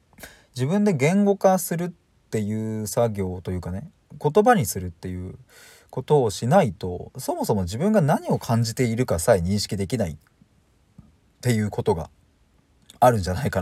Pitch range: 95-150 Hz